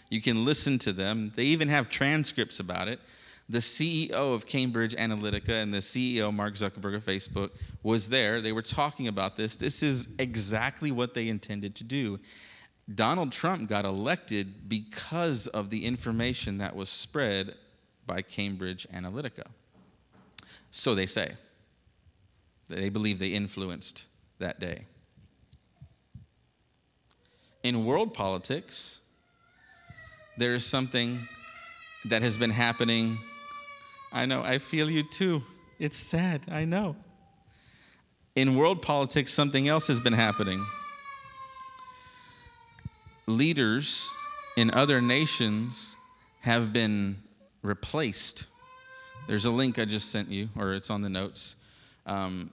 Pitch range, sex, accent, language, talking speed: 100-140 Hz, male, American, English, 125 wpm